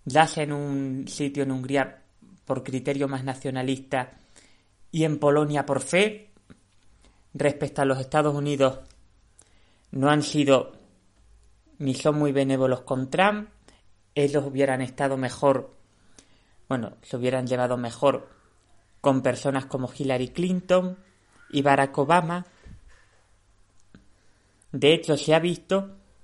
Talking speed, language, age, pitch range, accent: 115 wpm, Spanish, 30-49, 105-155 Hz, Spanish